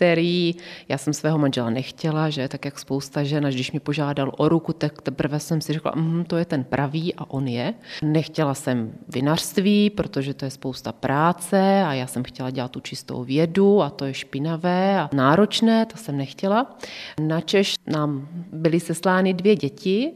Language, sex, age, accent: Czech, female, 30-49, native